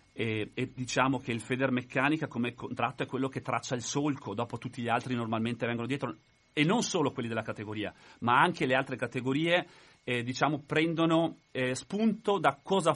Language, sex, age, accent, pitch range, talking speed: Italian, male, 40-59, native, 120-160 Hz, 180 wpm